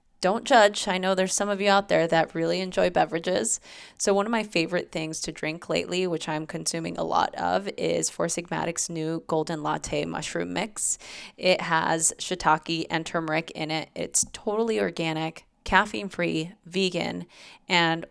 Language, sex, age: English, female, 20-39